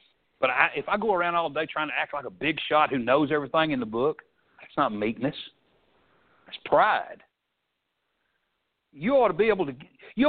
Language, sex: English, male